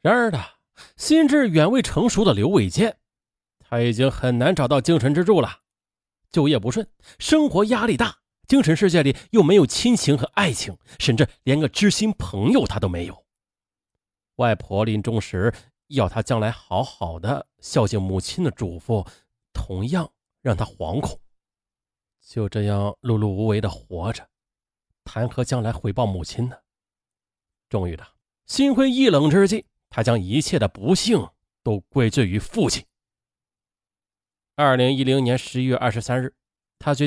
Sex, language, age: male, Chinese, 30-49